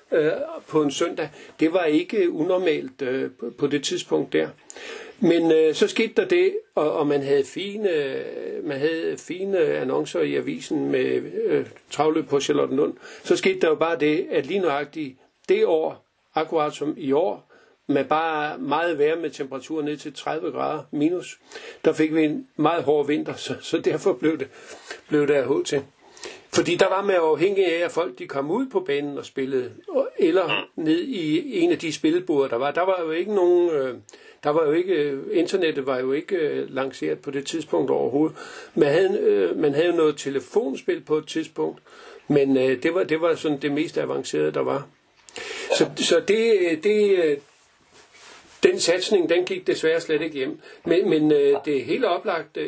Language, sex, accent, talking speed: Danish, male, native, 170 wpm